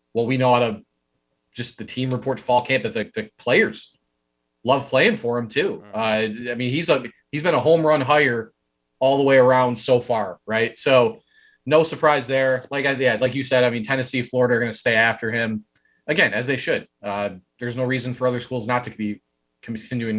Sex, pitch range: male, 110-130 Hz